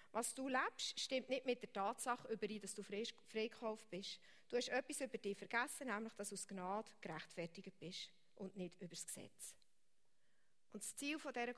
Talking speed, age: 185 wpm, 40-59